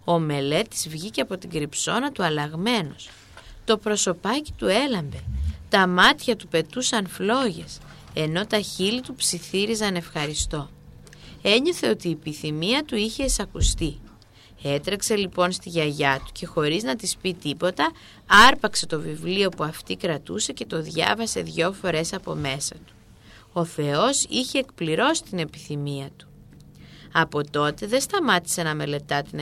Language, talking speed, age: Greek, 140 wpm, 20-39